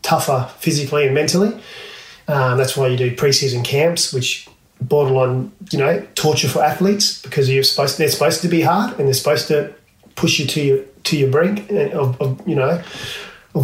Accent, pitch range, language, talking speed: Australian, 135-160 Hz, English, 190 wpm